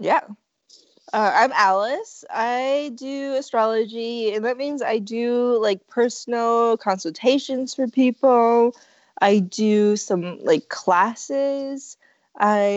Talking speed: 110 wpm